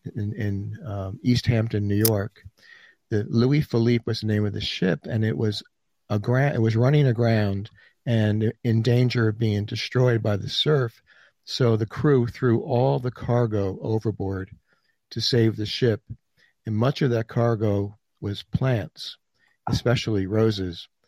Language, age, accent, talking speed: English, 50-69, American, 155 wpm